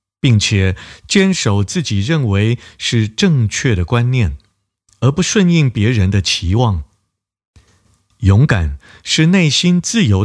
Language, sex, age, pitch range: Chinese, male, 50-69, 100-135 Hz